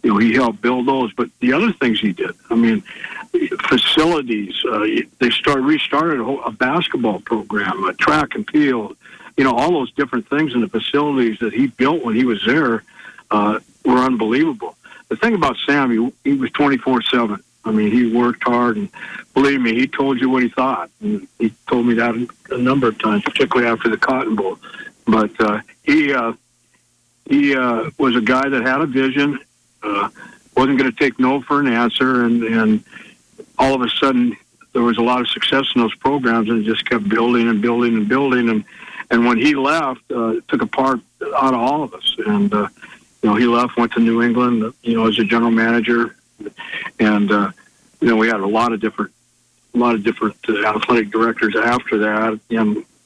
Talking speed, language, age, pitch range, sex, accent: 200 wpm, English, 60-79, 115-135 Hz, male, American